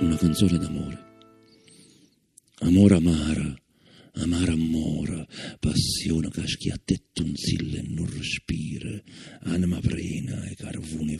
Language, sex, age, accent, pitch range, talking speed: Italian, male, 50-69, native, 80-110 Hz, 100 wpm